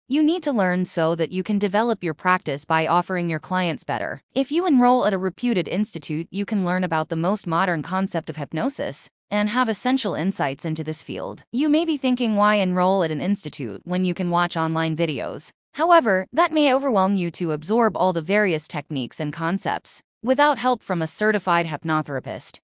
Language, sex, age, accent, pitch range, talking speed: English, female, 20-39, American, 165-225 Hz, 195 wpm